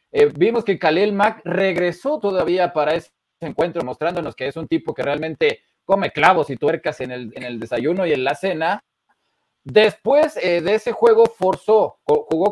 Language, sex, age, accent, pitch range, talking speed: Spanish, male, 30-49, Mexican, 150-195 Hz, 175 wpm